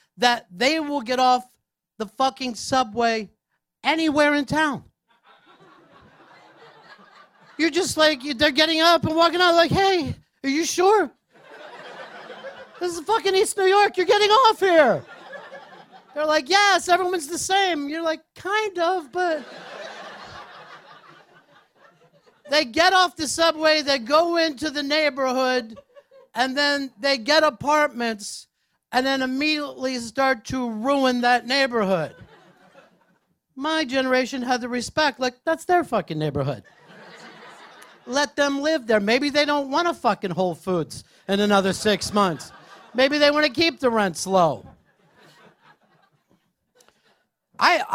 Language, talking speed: English, 130 wpm